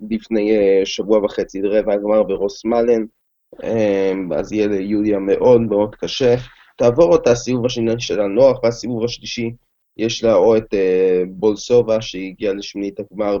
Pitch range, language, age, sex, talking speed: 105-125 Hz, Hebrew, 20-39, male, 125 wpm